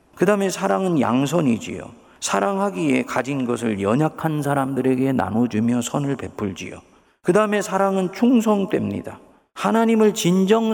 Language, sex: Korean, male